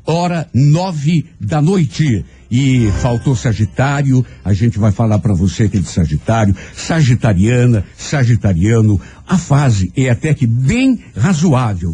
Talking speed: 130 wpm